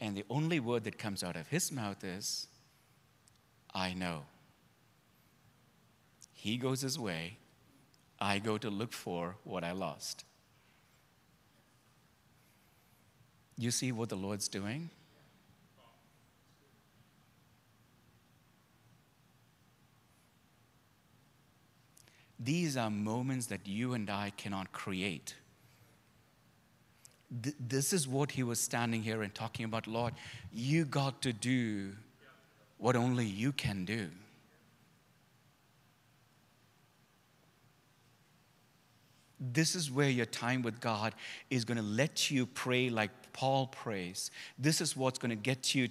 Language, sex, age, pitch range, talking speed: English, male, 60-79, 110-135 Hz, 110 wpm